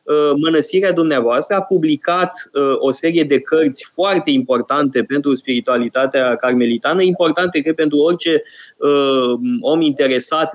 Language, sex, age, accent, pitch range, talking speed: Romanian, male, 20-39, native, 130-175 Hz, 110 wpm